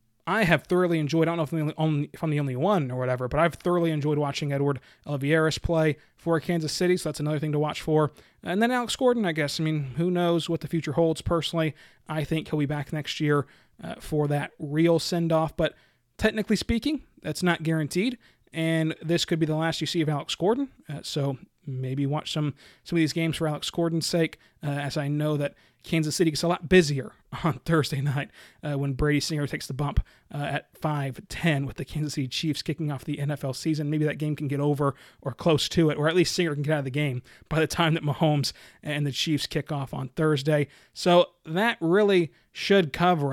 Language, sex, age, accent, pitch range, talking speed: English, male, 30-49, American, 145-165 Hz, 225 wpm